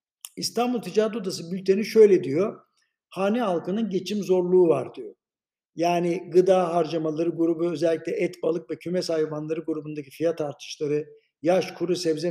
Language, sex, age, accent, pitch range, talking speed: Turkish, male, 60-79, native, 160-200 Hz, 135 wpm